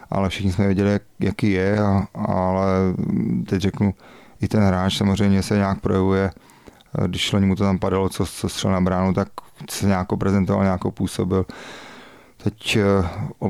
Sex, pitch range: male, 90-100 Hz